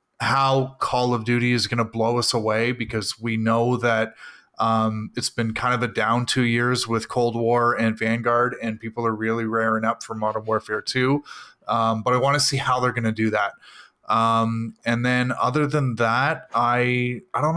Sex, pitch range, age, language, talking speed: male, 115-130 Hz, 20-39, English, 200 wpm